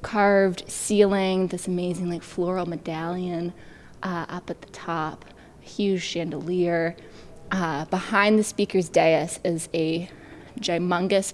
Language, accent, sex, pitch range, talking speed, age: English, American, female, 170-200 Hz, 115 wpm, 20-39